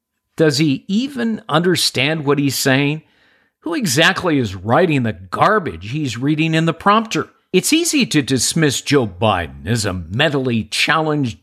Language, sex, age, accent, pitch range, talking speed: English, male, 50-69, American, 125-190 Hz, 145 wpm